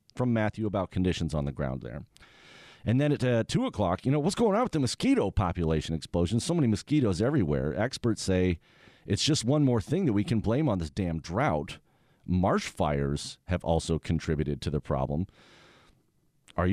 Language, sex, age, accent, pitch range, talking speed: English, male, 40-59, American, 85-130 Hz, 185 wpm